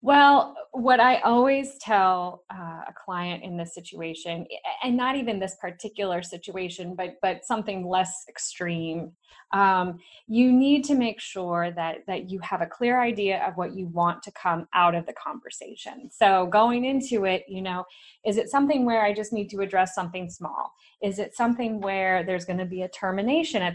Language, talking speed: English, 185 wpm